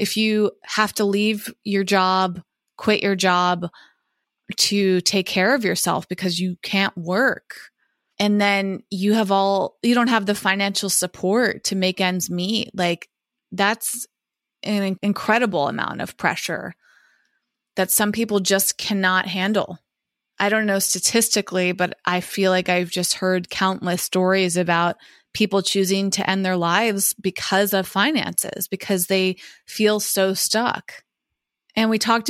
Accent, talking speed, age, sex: American, 145 wpm, 20-39, female